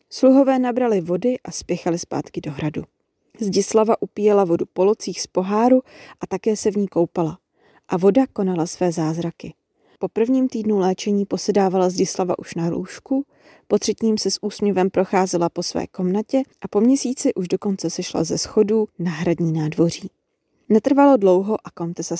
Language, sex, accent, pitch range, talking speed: Czech, female, native, 175-220 Hz, 155 wpm